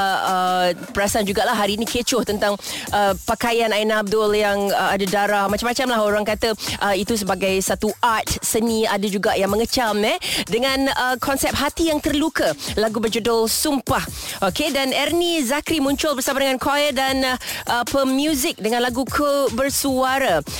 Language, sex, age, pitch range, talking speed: Malay, female, 20-39, 210-275 Hz, 155 wpm